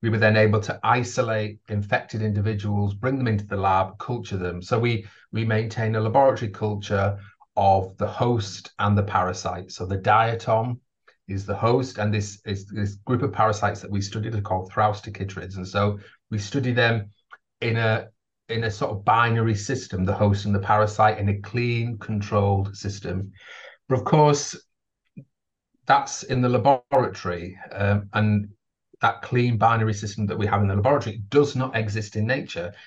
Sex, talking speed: male, 170 wpm